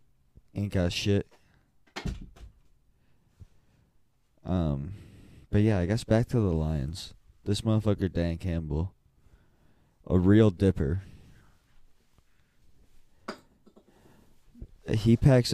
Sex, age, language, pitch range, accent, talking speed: male, 20-39, English, 90-110 Hz, American, 80 wpm